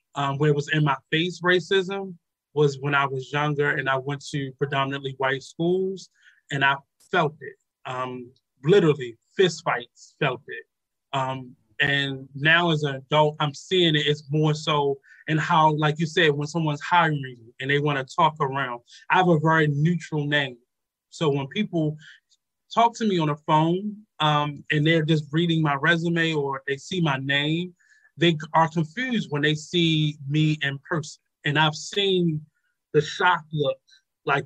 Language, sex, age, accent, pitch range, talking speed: English, male, 20-39, American, 140-165 Hz, 170 wpm